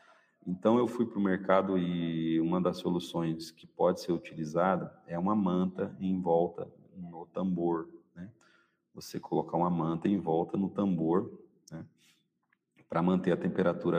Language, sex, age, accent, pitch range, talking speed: Portuguese, male, 40-59, Brazilian, 85-110 Hz, 150 wpm